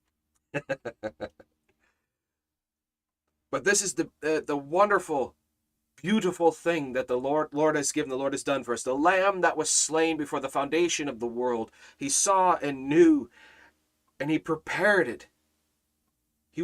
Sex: male